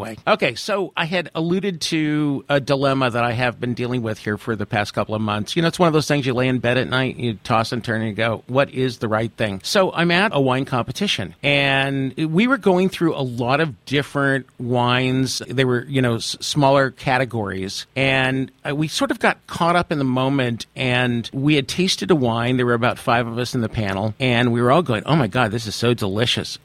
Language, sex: English, male